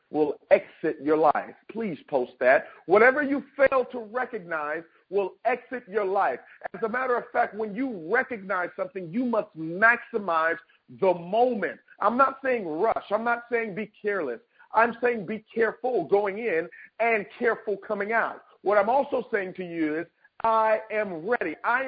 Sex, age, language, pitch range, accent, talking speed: male, 50-69, English, 190-245 Hz, American, 165 wpm